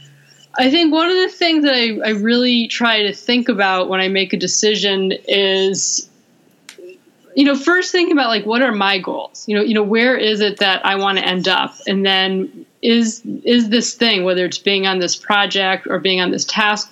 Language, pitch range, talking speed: English, 190-235 Hz, 215 wpm